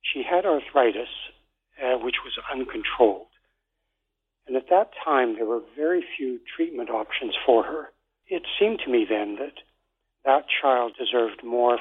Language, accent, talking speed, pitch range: English, American, 145 wpm, 120-175 Hz